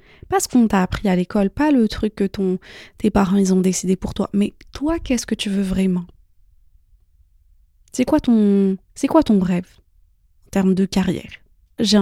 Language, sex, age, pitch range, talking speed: French, female, 20-39, 175-225 Hz, 190 wpm